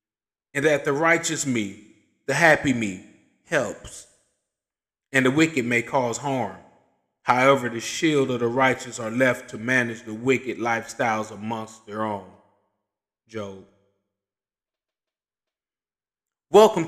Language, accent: English, American